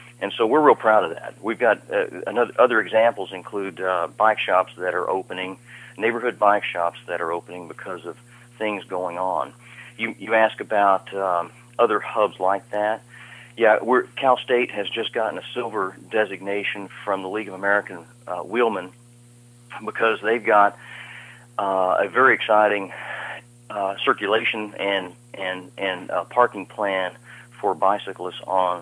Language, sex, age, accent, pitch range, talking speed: English, male, 40-59, American, 95-120 Hz, 155 wpm